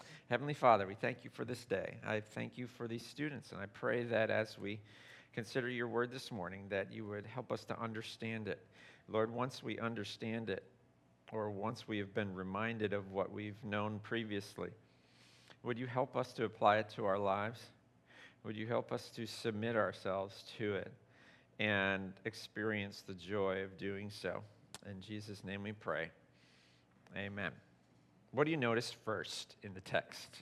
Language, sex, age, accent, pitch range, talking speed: English, male, 50-69, American, 100-120 Hz, 175 wpm